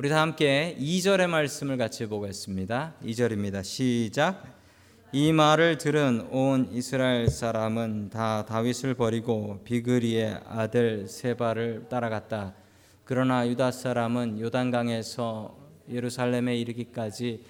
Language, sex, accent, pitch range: Korean, male, native, 100-145 Hz